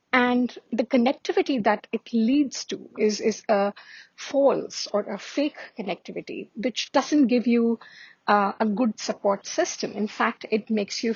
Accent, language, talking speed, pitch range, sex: Indian, English, 155 wpm, 205-260 Hz, female